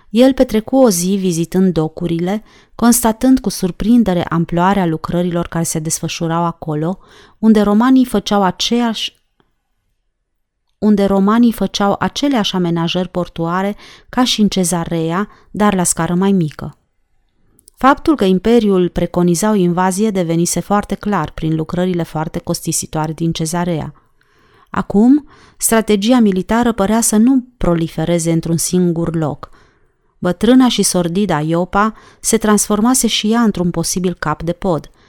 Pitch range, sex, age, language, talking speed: 170-215 Hz, female, 30-49, Romanian, 120 wpm